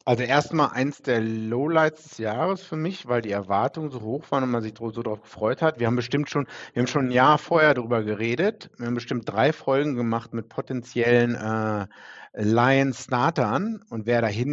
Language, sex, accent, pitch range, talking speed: German, male, German, 110-135 Hz, 200 wpm